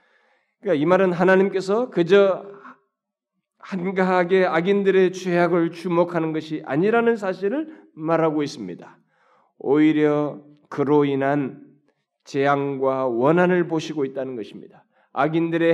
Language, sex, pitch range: Korean, male, 155-185 Hz